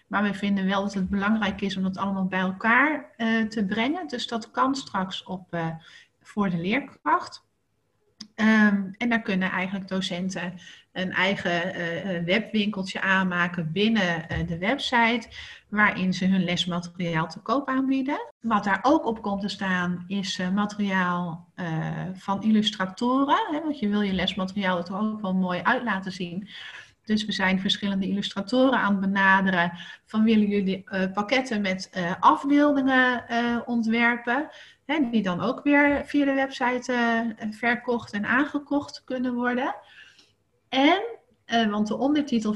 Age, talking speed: 30-49, 150 wpm